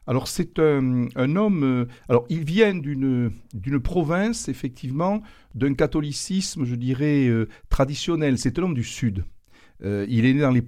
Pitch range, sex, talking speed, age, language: 115-180 Hz, male, 170 wpm, 60-79, French